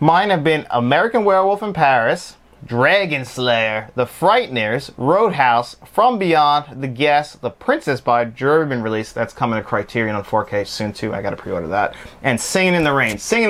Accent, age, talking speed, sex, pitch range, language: American, 30-49, 180 wpm, male, 110-135 Hz, English